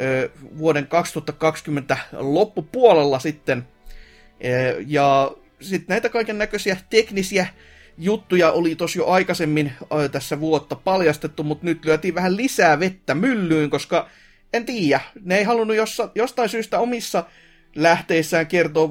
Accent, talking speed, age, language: native, 115 wpm, 30-49, Finnish